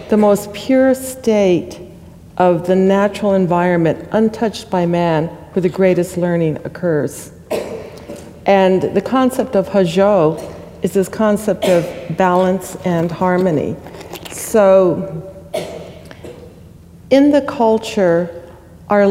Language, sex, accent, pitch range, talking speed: English, female, American, 170-205 Hz, 105 wpm